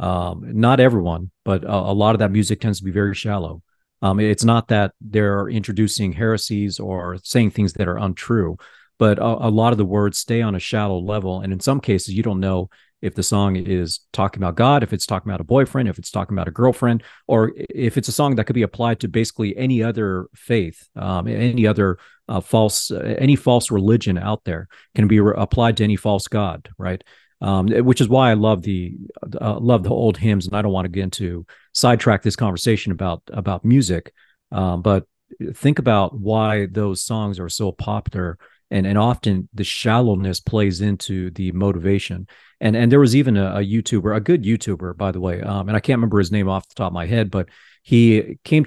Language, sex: English, male